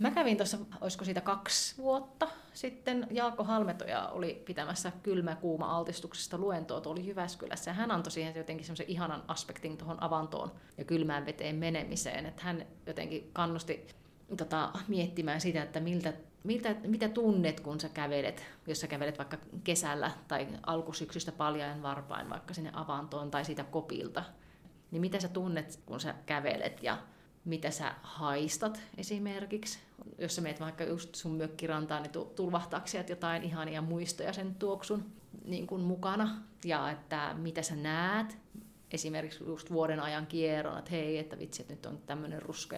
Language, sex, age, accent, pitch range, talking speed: Finnish, female, 30-49, native, 155-185 Hz, 150 wpm